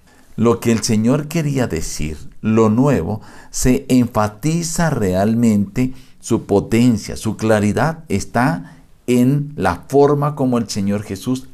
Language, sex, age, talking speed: Spanish, male, 50-69, 120 wpm